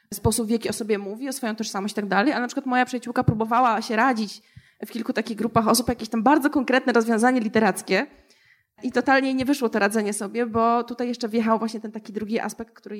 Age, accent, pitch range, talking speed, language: 20-39, native, 215-265 Hz, 215 wpm, Polish